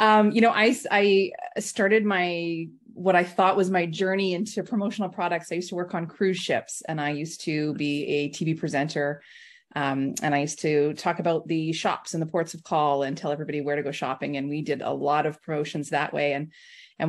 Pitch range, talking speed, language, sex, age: 160-200 Hz, 220 wpm, English, female, 30-49